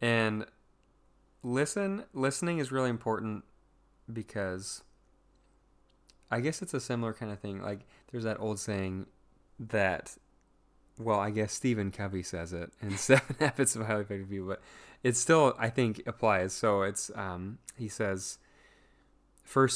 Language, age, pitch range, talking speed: English, 20-39, 100-120 Hz, 145 wpm